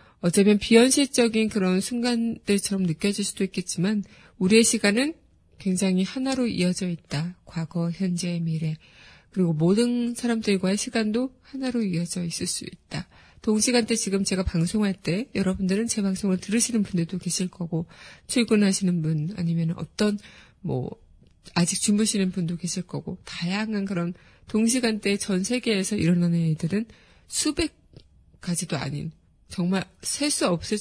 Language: Korean